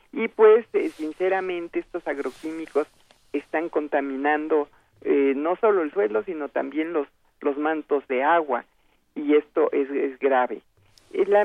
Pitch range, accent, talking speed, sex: 150-210 Hz, Mexican, 130 wpm, male